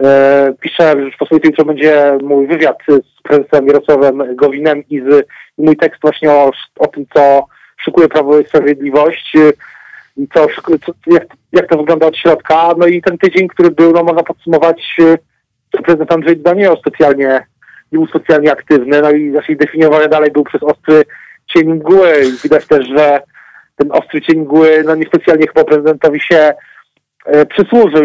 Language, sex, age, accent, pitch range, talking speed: Polish, male, 40-59, native, 145-165 Hz, 165 wpm